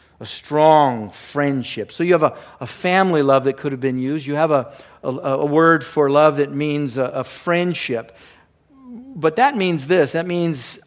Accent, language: American, English